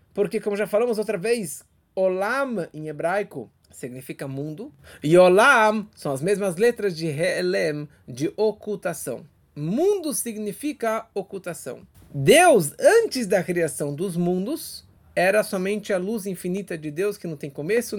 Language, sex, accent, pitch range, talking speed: Portuguese, male, Brazilian, 175-240 Hz, 135 wpm